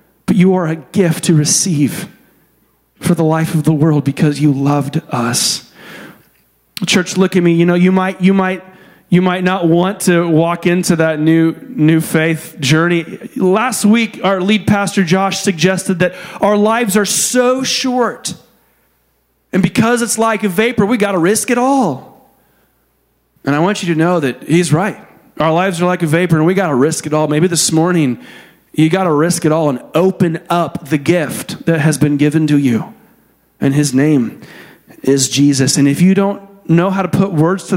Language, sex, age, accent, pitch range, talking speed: English, male, 40-59, American, 155-190 Hz, 190 wpm